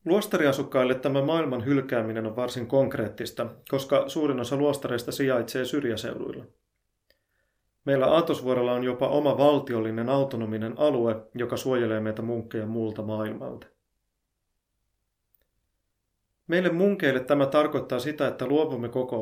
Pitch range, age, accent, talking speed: 110-135 Hz, 30-49, native, 110 wpm